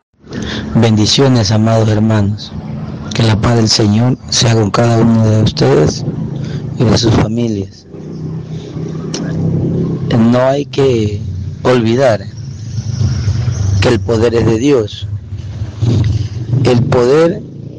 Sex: male